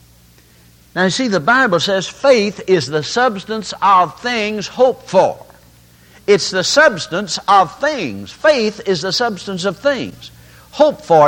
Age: 60-79